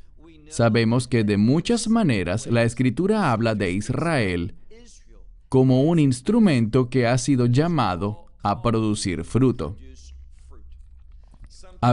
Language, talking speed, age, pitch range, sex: English, 105 wpm, 40-59, 100-145 Hz, male